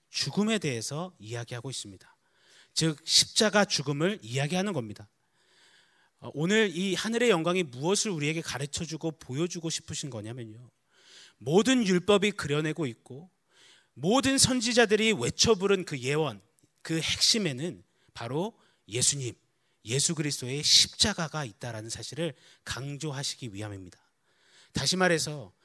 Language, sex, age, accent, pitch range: Korean, male, 30-49, native, 130-185 Hz